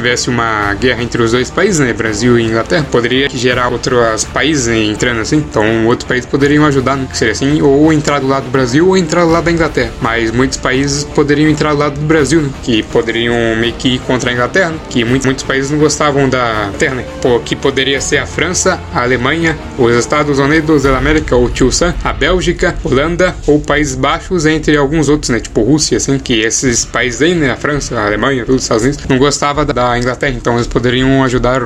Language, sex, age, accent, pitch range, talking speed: Portuguese, male, 20-39, Brazilian, 120-150 Hz, 220 wpm